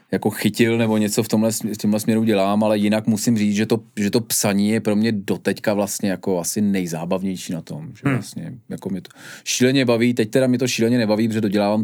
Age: 30-49